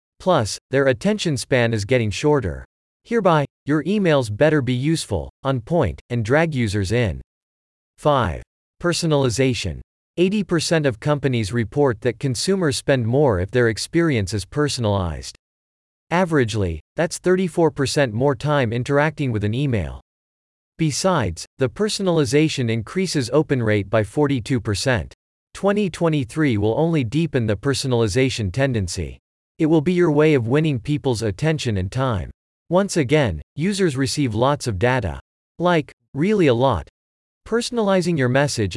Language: English